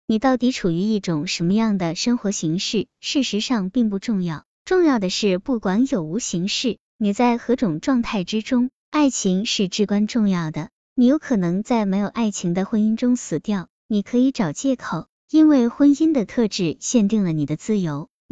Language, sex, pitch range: Chinese, male, 185-245 Hz